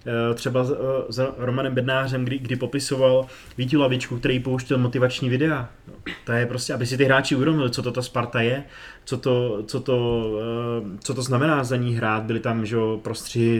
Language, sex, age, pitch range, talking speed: Czech, male, 20-39, 115-130 Hz, 170 wpm